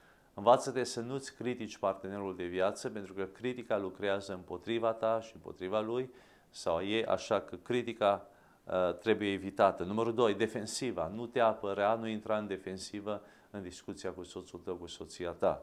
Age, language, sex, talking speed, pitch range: 40-59, English, male, 165 wpm, 95-115 Hz